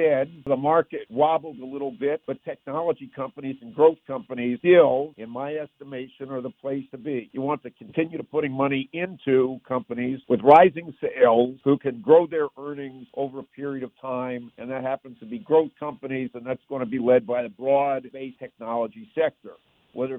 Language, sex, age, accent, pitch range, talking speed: English, male, 60-79, American, 130-150 Hz, 185 wpm